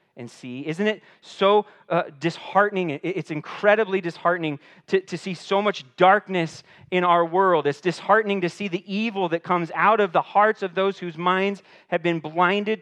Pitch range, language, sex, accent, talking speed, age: 135-190 Hz, English, male, American, 180 wpm, 30-49